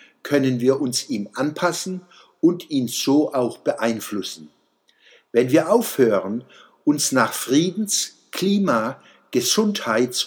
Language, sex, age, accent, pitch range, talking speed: German, male, 60-79, German, 125-185 Hz, 105 wpm